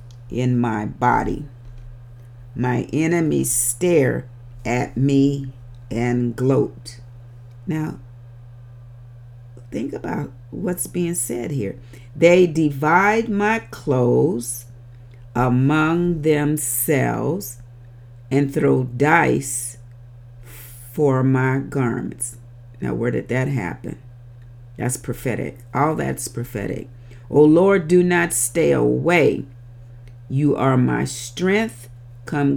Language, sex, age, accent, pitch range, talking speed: English, female, 50-69, American, 120-140 Hz, 90 wpm